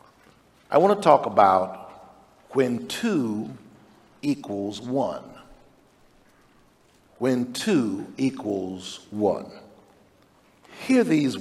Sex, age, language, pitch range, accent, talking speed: male, 50-69, English, 110-135 Hz, American, 80 wpm